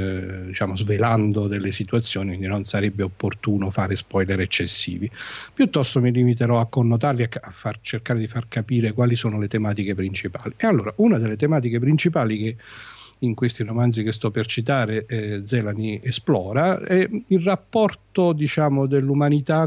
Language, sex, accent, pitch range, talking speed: Italian, male, native, 110-140 Hz, 145 wpm